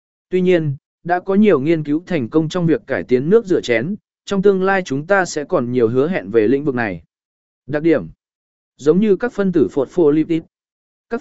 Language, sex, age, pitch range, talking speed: Vietnamese, male, 20-39, 145-210 Hz, 210 wpm